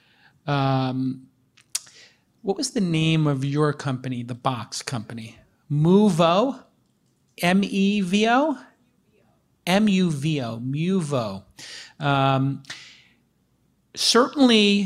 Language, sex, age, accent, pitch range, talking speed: English, male, 40-59, American, 135-165 Hz, 70 wpm